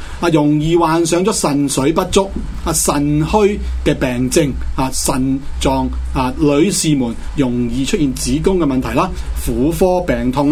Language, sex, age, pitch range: Chinese, male, 30-49, 120-175 Hz